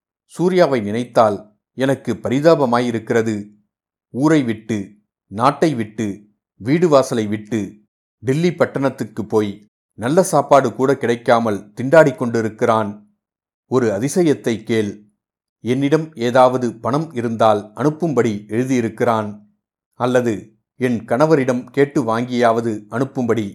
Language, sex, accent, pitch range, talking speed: Tamil, male, native, 110-135 Hz, 85 wpm